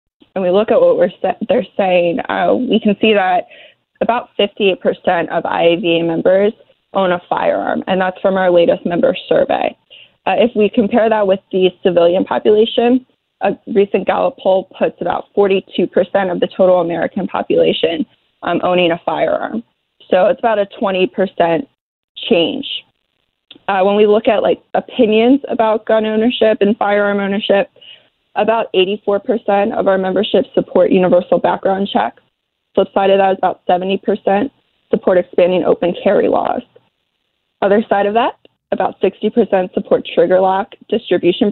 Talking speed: 150 wpm